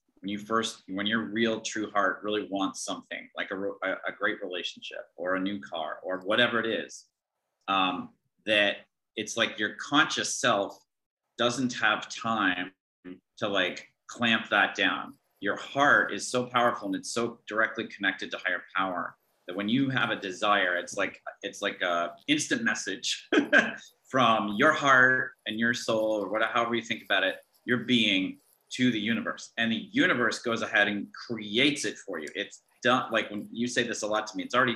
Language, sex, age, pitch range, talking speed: English, male, 30-49, 100-120 Hz, 185 wpm